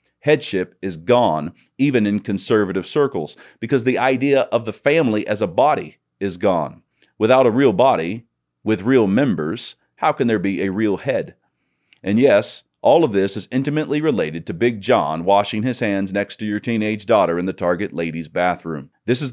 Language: English